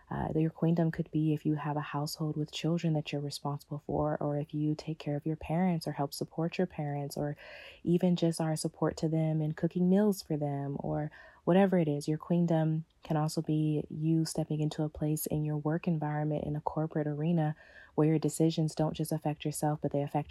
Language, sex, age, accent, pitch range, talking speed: English, female, 20-39, American, 145-160 Hz, 215 wpm